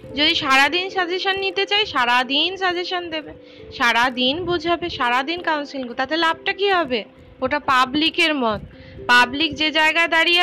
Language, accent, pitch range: Bengali, native, 260-330 Hz